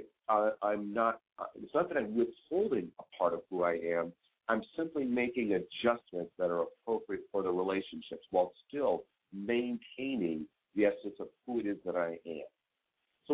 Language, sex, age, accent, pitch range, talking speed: English, male, 50-69, American, 100-140 Hz, 160 wpm